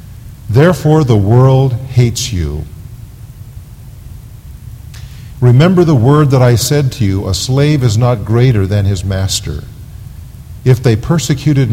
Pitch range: 110-135 Hz